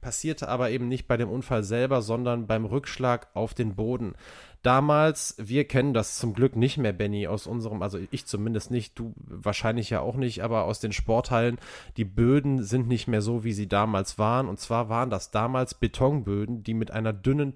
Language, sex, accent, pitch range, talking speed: German, male, German, 110-135 Hz, 200 wpm